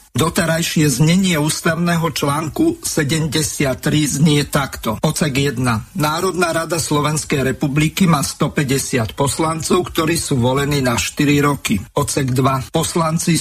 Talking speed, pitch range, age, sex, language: 110 wpm, 140-165 Hz, 50-69, male, Slovak